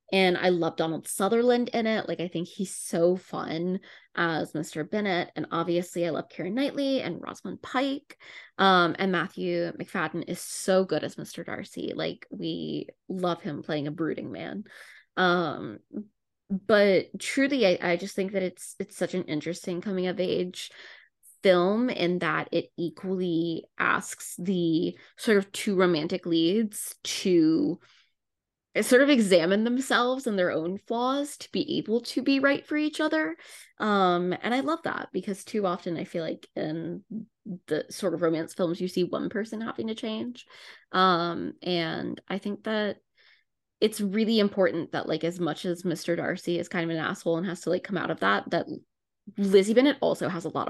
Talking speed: 175 wpm